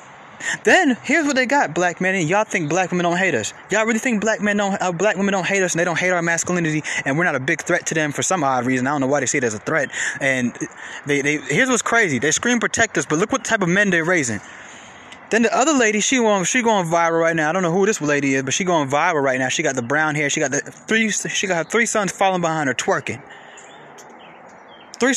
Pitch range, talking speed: 150-225 Hz, 270 wpm